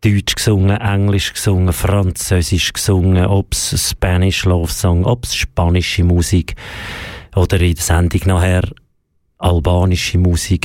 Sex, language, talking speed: male, German, 115 wpm